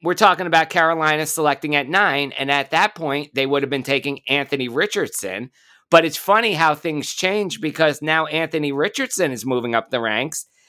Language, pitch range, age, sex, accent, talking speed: English, 140-175 Hz, 50-69, male, American, 185 wpm